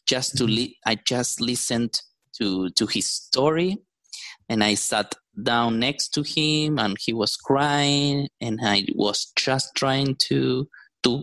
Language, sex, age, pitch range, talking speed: English, male, 20-39, 115-145 Hz, 150 wpm